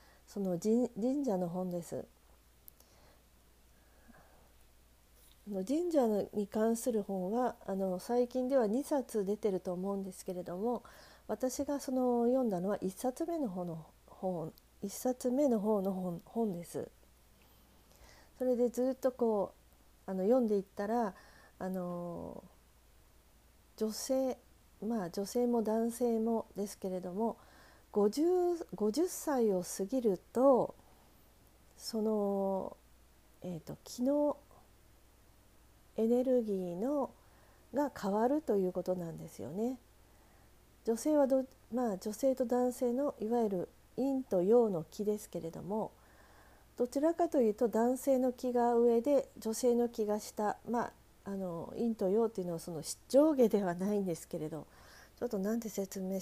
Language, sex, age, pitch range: Japanese, female, 40-59, 180-245 Hz